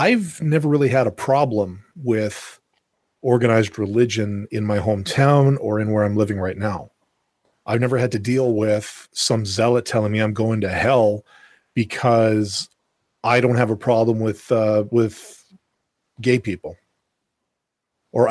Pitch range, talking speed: 110-140 Hz, 150 wpm